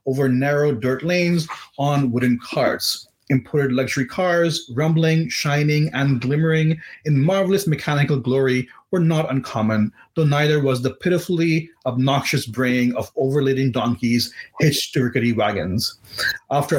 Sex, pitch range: male, 130-165 Hz